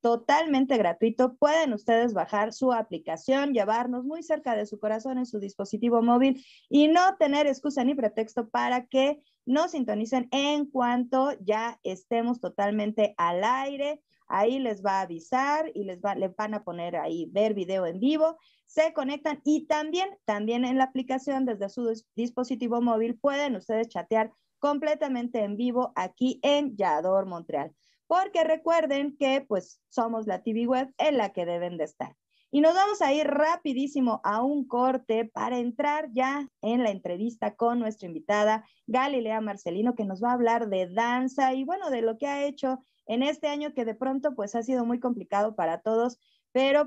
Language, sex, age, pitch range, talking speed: Spanish, female, 30-49, 215-280 Hz, 170 wpm